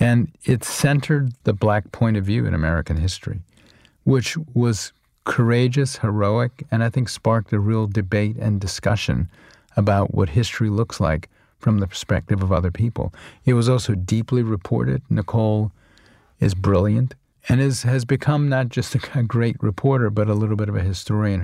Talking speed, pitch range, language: 160 wpm, 100-120 Hz, English